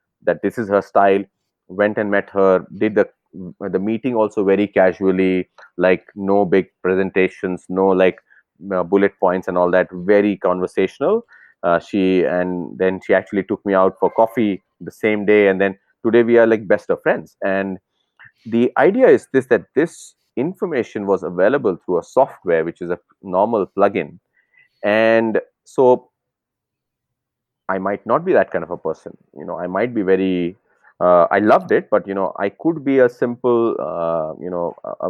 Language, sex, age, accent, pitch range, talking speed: German, male, 30-49, Indian, 95-110 Hz, 175 wpm